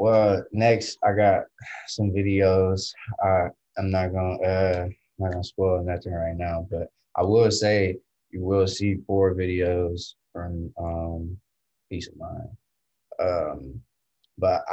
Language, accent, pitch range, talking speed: English, American, 90-105 Hz, 140 wpm